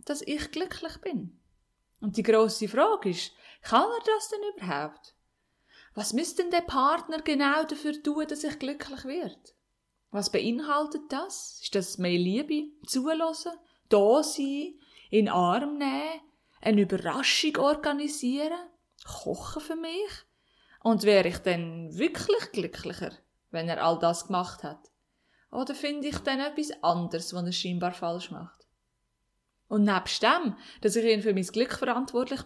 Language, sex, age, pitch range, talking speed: German, female, 20-39, 200-310 Hz, 145 wpm